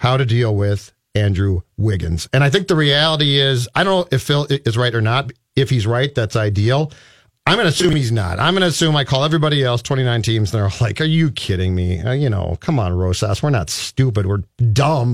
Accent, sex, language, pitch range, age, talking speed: American, male, English, 115-160 Hz, 50-69, 235 wpm